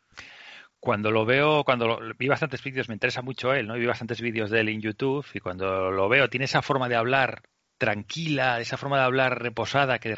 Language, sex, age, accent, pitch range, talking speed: Spanish, male, 30-49, Spanish, 115-135 Hz, 220 wpm